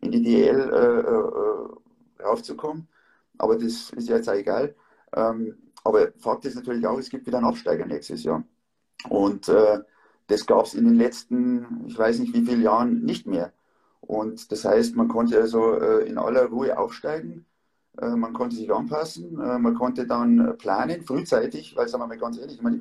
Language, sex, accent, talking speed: German, male, German, 185 wpm